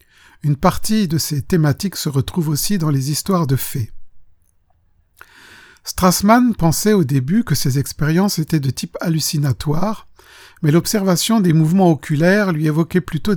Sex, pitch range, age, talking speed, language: male, 130-175 Hz, 50-69, 145 wpm, French